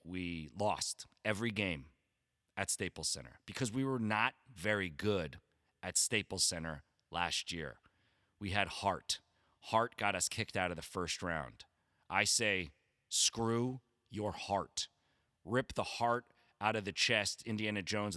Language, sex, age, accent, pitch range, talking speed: English, male, 40-59, American, 100-135 Hz, 145 wpm